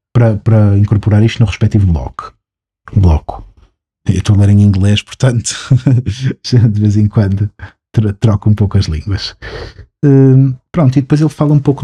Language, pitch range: Portuguese, 100-115 Hz